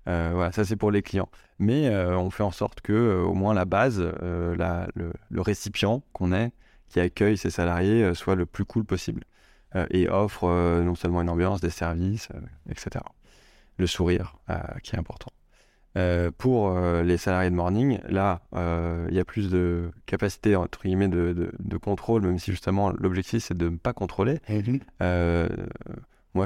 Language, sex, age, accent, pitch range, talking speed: French, male, 20-39, French, 85-100 Hz, 195 wpm